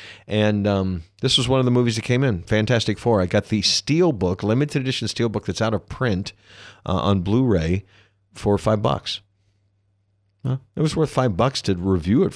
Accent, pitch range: American, 95-115 Hz